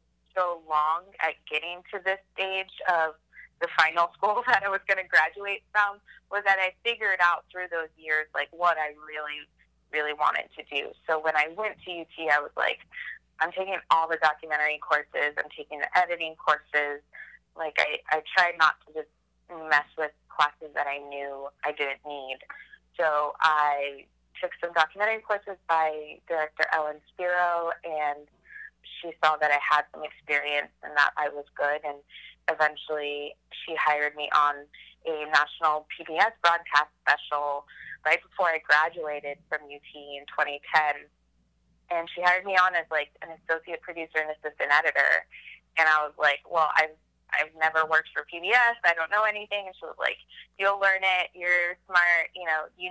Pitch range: 150-175 Hz